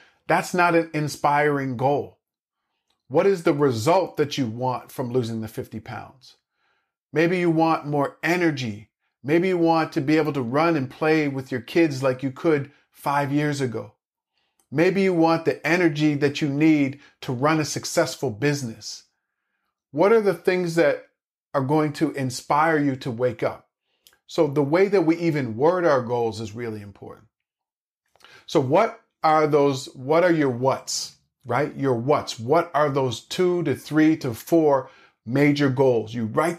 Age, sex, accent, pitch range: 40-59, male, American, 130-160 Hz